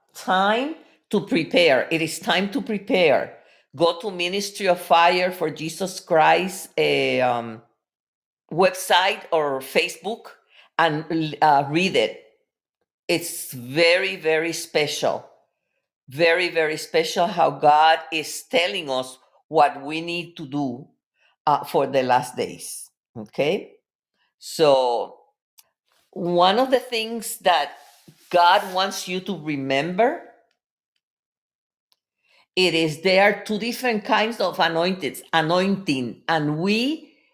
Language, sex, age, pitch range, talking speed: English, female, 50-69, 160-205 Hz, 110 wpm